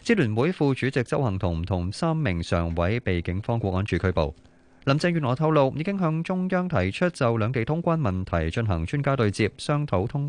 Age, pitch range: 30-49, 100-150 Hz